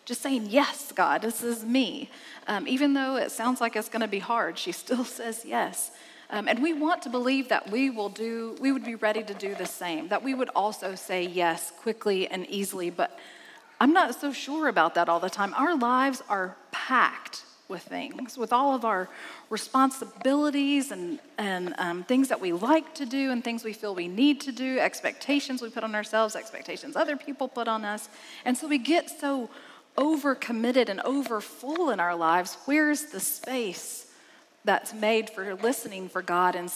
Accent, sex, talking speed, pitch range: American, female, 195 wpm, 205-275 Hz